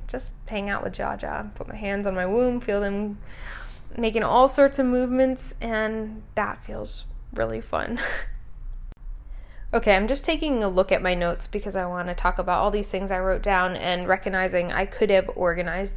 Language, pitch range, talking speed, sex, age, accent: English, 180-210 Hz, 185 wpm, female, 10-29, American